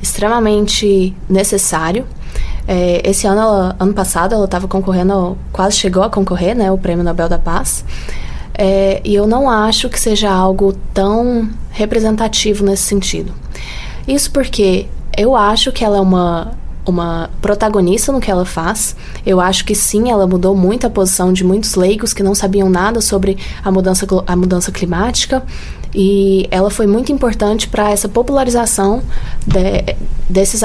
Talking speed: 150 wpm